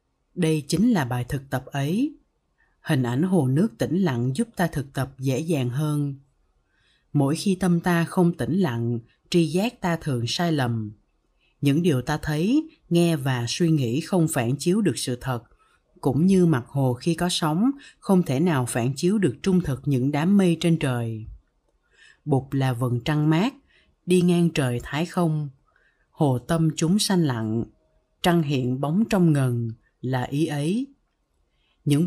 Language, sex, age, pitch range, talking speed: Vietnamese, female, 20-39, 130-175 Hz, 170 wpm